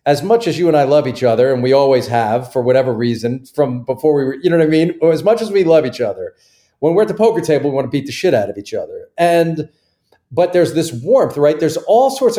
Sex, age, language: male, 40-59, English